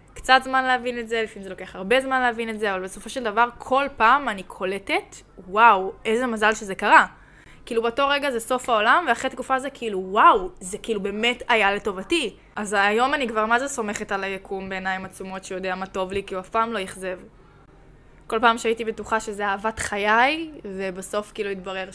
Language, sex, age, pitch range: Hebrew, female, 20-39, 190-235 Hz